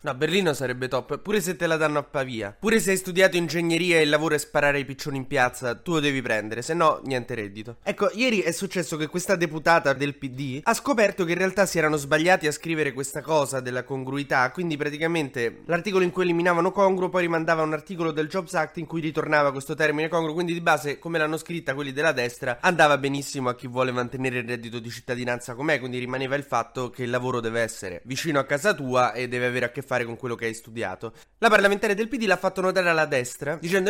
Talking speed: 230 wpm